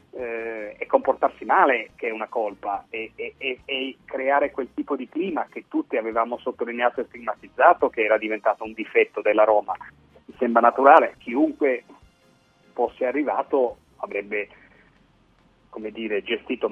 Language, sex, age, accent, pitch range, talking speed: Italian, male, 40-59, native, 105-135 Hz, 135 wpm